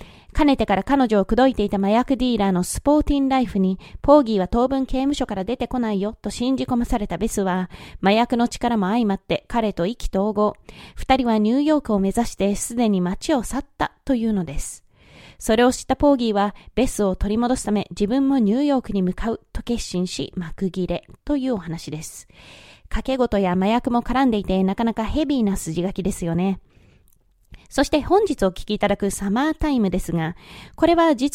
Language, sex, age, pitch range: Japanese, female, 20-39, 195-260 Hz